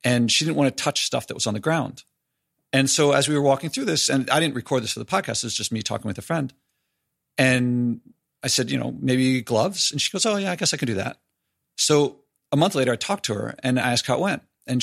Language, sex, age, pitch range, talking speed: English, male, 50-69, 125-155 Hz, 280 wpm